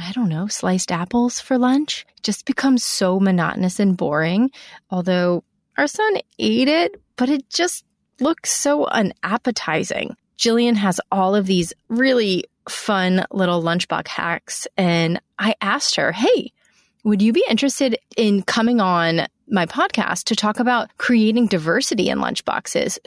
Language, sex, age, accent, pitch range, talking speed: English, female, 30-49, American, 175-240 Hz, 145 wpm